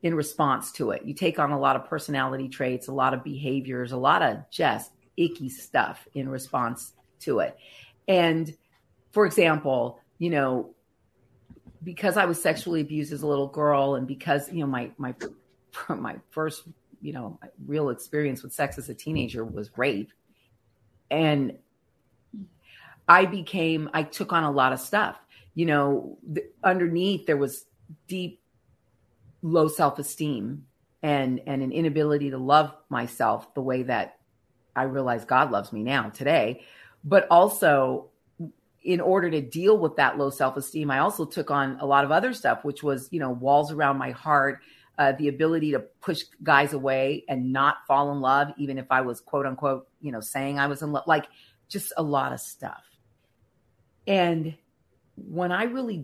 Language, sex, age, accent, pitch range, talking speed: English, female, 40-59, American, 130-160 Hz, 165 wpm